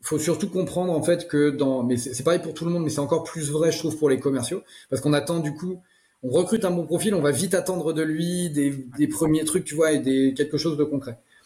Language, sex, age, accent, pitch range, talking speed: French, male, 30-49, French, 135-165 Hz, 280 wpm